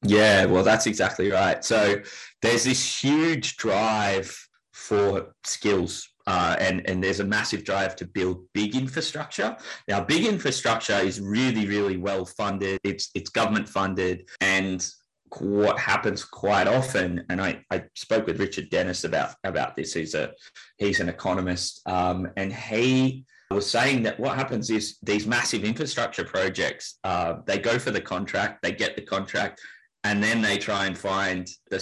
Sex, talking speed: male, 155 wpm